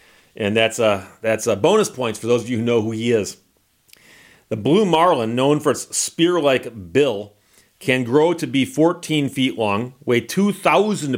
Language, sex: English, male